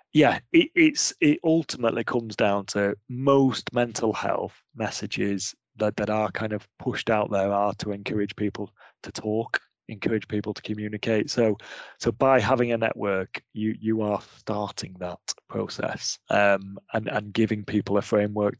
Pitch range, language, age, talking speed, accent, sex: 105-125 Hz, English, 30-49, 160 wpm, British, male